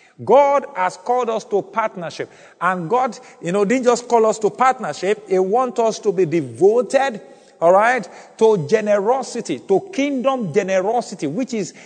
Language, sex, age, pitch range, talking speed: English, male, 50-69, 200-250 Hz, 155 wpm